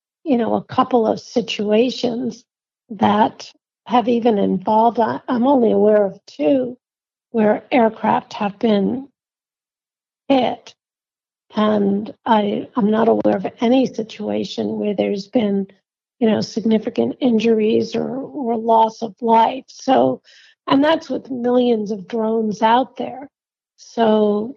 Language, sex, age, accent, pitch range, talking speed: English, female, 50-69, American, 215-250 Hz, 120 wpm